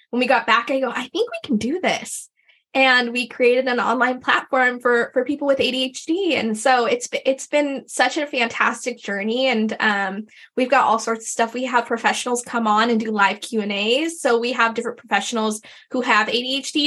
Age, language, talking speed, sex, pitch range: 10-29, English, 210 wpm, female, 215-255 Hz